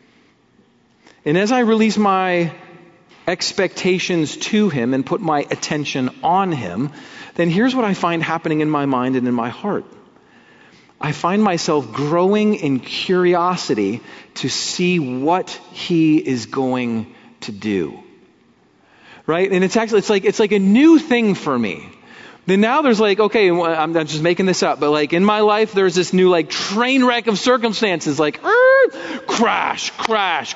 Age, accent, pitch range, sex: 40-59, American, 170-250 Hz, male